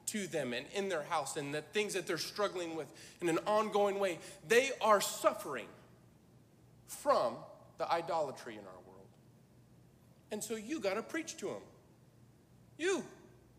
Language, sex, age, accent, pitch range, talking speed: English, male, 40-59, American, 185-245 Hz, 155 wpm